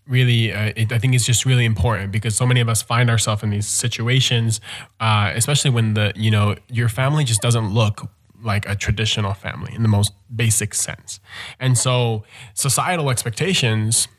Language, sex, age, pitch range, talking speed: English, male, 20-39, 105-125 Hz, 180 wpm